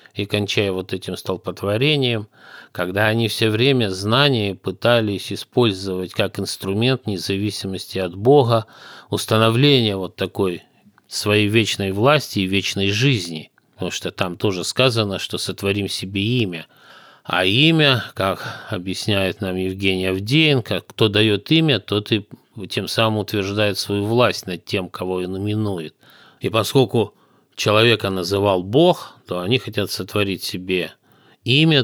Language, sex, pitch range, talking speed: Russian, male, 95-115 Hz, 130 wpm